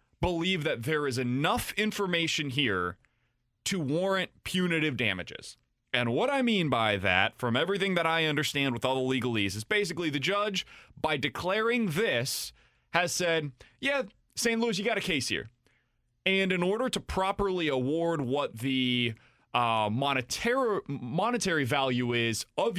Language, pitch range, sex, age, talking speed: English, 125-170 Hz, male, 20-39, 150 wpm